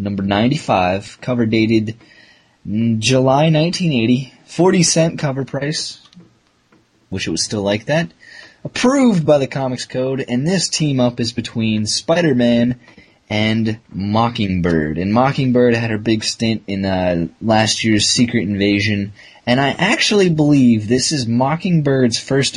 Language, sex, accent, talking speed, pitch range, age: English, male, American, 135 wpm, 100-130 Hz, 20-39